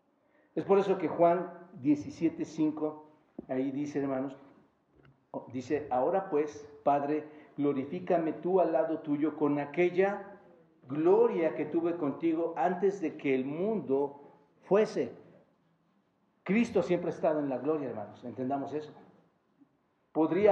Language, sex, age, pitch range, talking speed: Spanish, male, 50-69, 150-185 Hz, 125 wpm